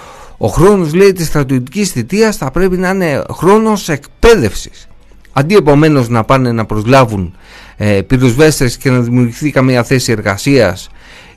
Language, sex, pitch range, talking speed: Greek, male, 95-145 Hz, 135 wpm